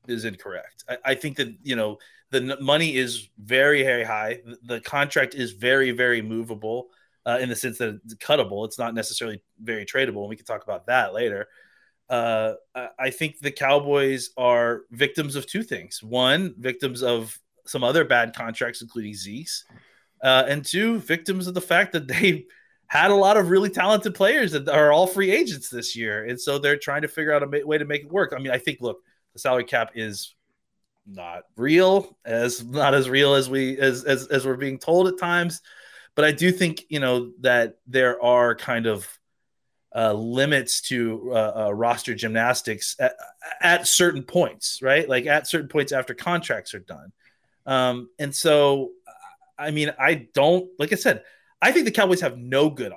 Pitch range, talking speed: 120-160 Hz, 195 wpm